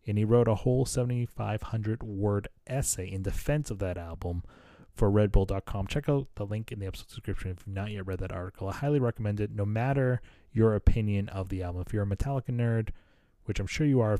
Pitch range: 100-130 Hz